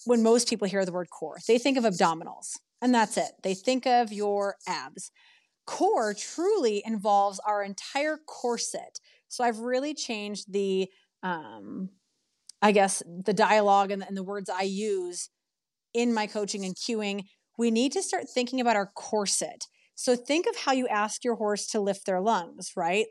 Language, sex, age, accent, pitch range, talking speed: English, female, 30-49, American, 195-245 Hz, 175 wpm